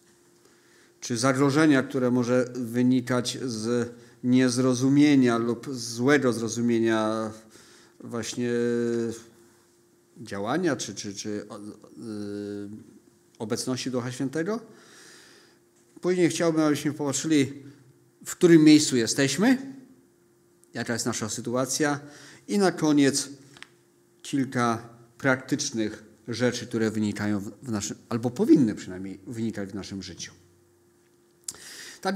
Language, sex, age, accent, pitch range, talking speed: Polish, male, 40-59, native, 115-145 Hz, 90 wpm